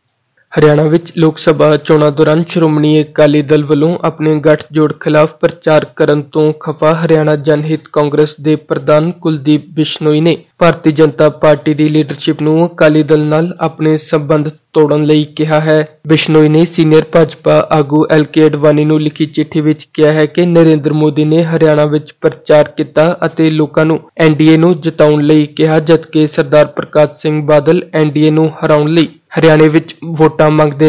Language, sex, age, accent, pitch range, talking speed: English, male, 20-39, Indian, 150-160 Hz, 105 wpm